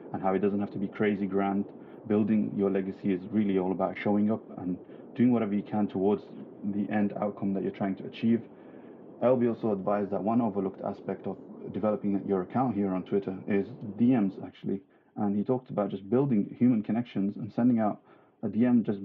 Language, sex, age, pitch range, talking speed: English, male, 30-49, 95-110 Hz, 200 wpm